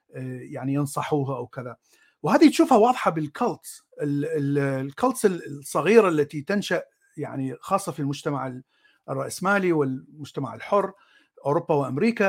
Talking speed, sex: 110 wpm, male